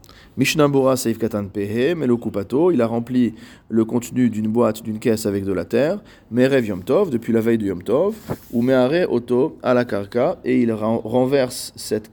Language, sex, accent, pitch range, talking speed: French, male, French, 110-130 Hz, 175 wpm